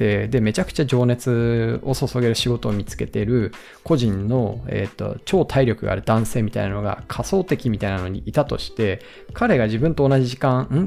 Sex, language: male, Japanese